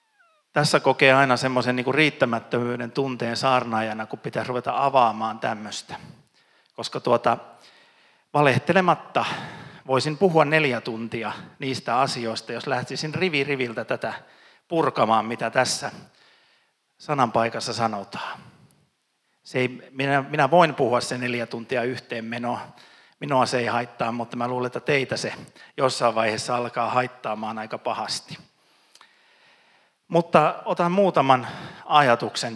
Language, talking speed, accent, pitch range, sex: Finnish, 110 wpm, native, 120-145 Hz, male